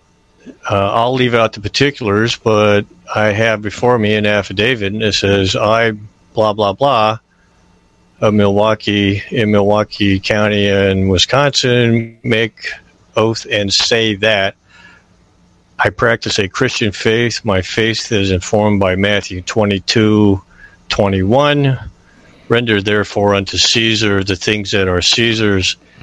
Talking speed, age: 120 wpm, 50-69